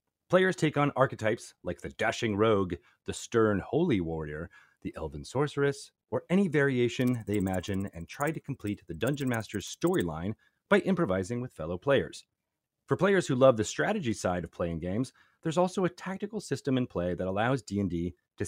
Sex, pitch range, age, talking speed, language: male, 95-140 Hz, 30-49, 175 wpm, English